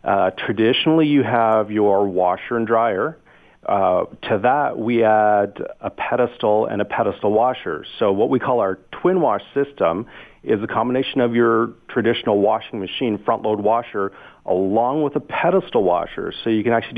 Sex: male